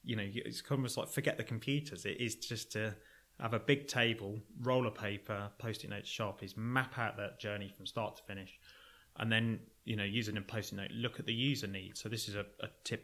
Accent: British